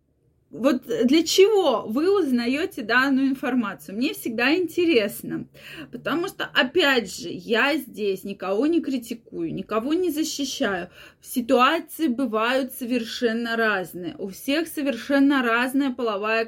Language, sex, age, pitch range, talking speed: Russian, female, 20-39, 230-295 Hz, 115 wpm